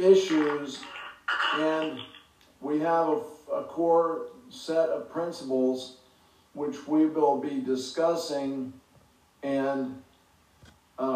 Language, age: English, 50-69